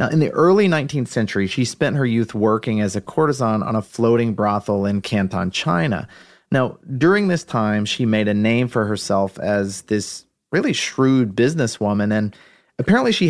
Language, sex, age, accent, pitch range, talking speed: English, male, 30-49, American, 105-130 Hz, 175 wpm